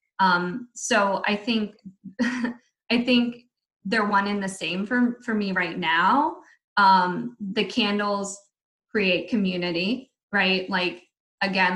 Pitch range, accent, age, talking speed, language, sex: 185-220 Hz, American, 20-39, 120 wpm, English, female